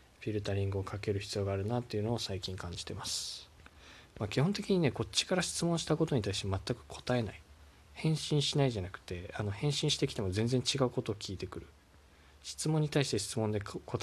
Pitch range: 85-120 Hz